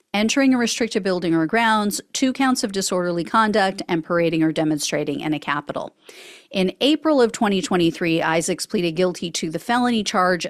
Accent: American